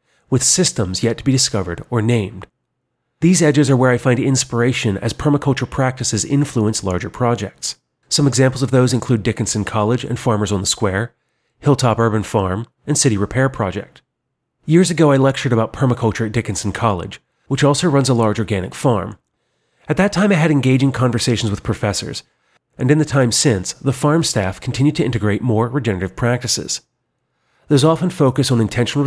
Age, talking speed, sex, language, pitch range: 40-59, 175 wpm, male, English, 105-135 Hz